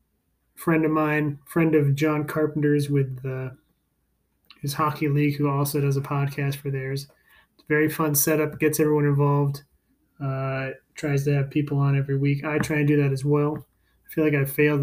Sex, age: male, 30-49